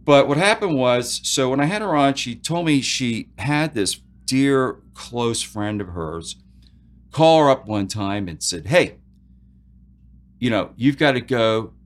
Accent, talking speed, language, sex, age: American, 175 wpm, English, male, 40-59